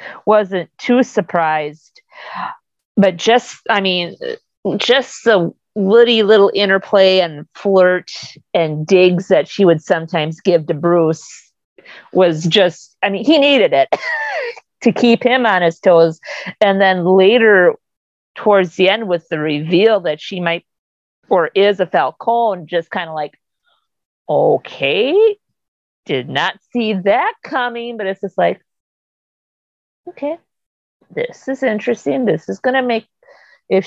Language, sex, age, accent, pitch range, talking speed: English, female, 40-59, American, 175-245 Hz, 135 wpm